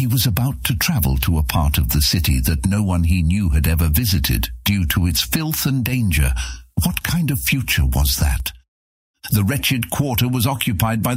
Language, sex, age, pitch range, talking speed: English, male, 60-79, 80-110 Hz, 200 wpm